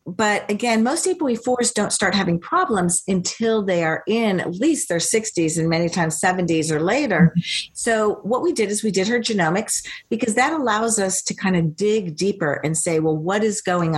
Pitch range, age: 170-220 Hz, 40-59